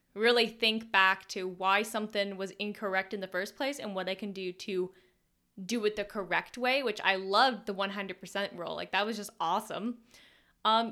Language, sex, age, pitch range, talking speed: English, female, 10-29, 195-245 Hz, 190 wpm